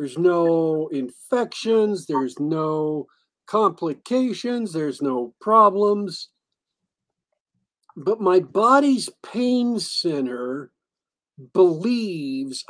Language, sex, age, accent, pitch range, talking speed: English, male, 50-69, American, 205-340 Hz, 70 wpm